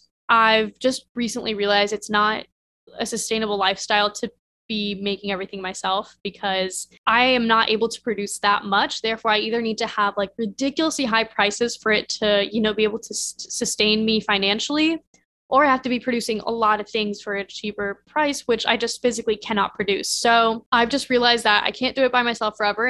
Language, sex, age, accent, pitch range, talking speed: English, female, 10-29, American, 200-235 Hz, 200 wpm